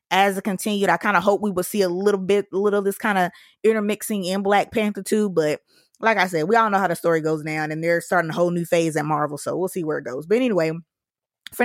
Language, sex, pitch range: English, female, 175-215 Hz